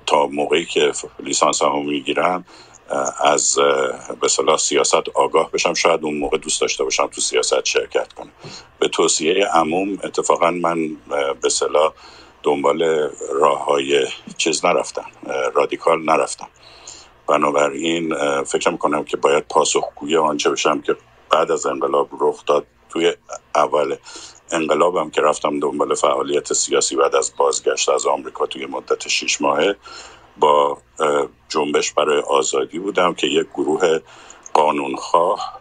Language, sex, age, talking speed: Persian, male, 50-69, 125 wpm